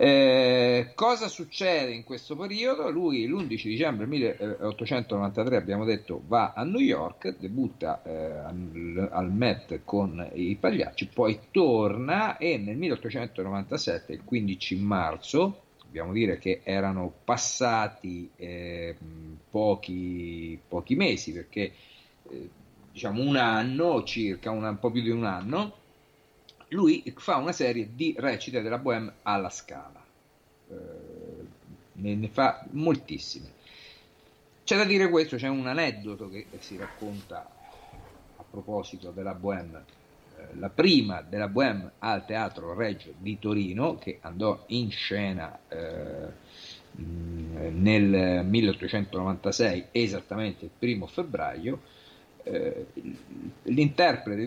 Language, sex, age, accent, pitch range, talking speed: Italian, male, 50-69, native, 95-125 Hz, 110 wpm